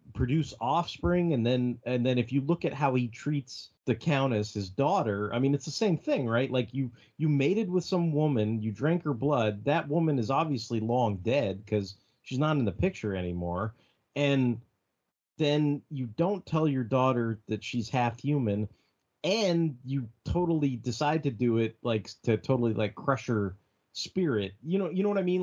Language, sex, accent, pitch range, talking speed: English, male, American, 110-145 Hz, 190 wpm